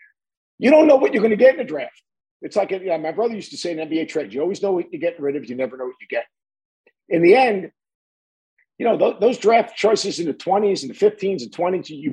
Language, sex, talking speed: English, male, 265 wpm